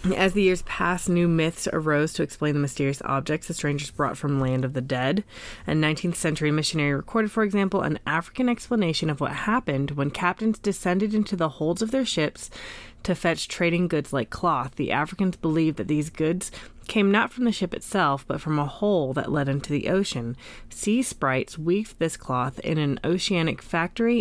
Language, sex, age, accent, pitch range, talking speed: English, female, 30-49, American, 135-170 Hz, 195 wpm